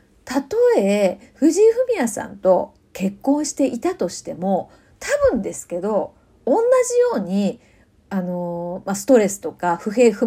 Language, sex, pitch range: Japanese, female, 190-295 Hz